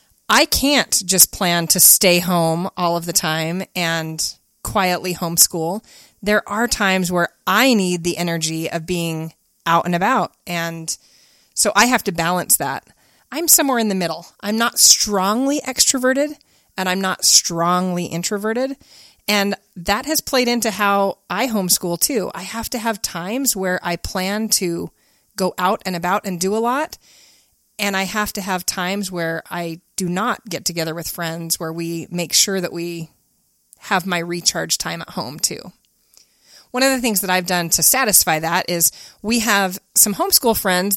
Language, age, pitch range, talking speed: English, 30-49, 175-220 Hz, 170 wpm